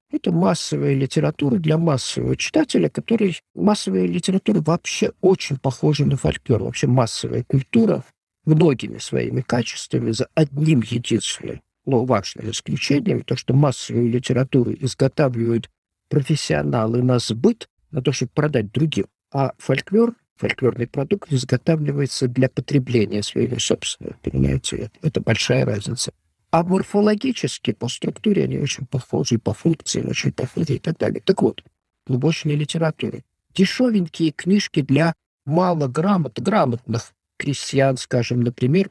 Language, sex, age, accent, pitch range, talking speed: Russian, male, 50-69, native, 115-165 Hz, 120 wpm